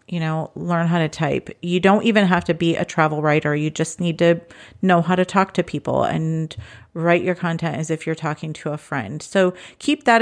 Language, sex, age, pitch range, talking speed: English, female, 40-59, 160-190 Hz, 230 wpm